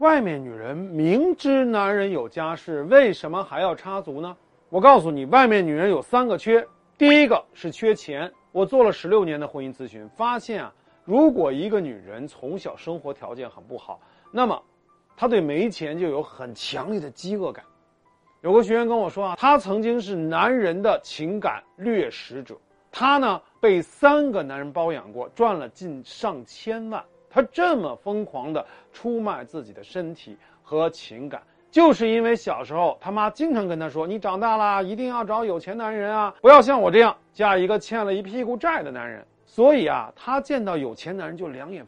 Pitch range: 165-240 Hz